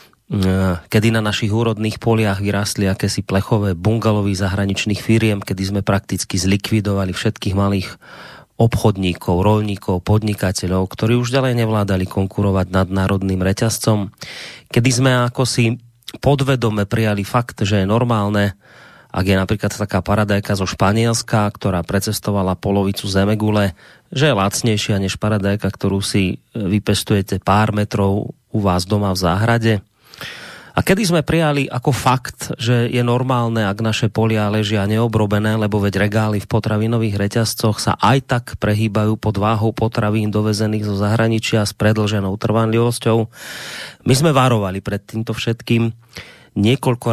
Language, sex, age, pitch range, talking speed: Slovak, male, 30-49, 100-120 Hz, 130 wpm